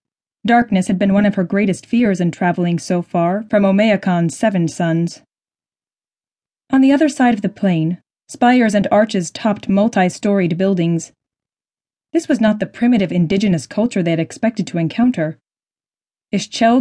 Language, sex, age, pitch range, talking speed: English, female, 20-39, 180-240 Hz, 150 wpm